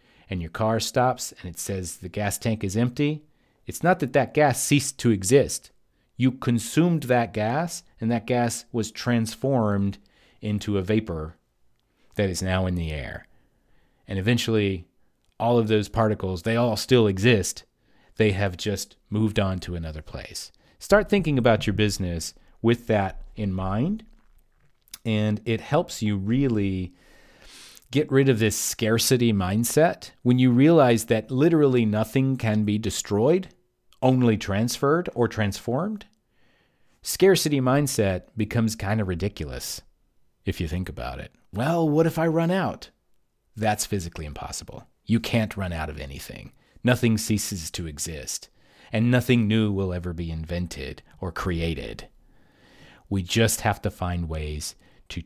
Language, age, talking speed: English, 40-59, 145 wpm